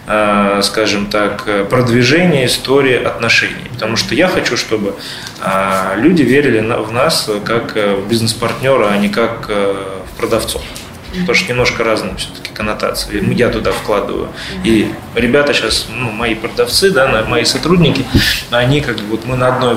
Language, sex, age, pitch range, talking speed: Russian, male, 20-39, 105-125 Hz, 145 wpm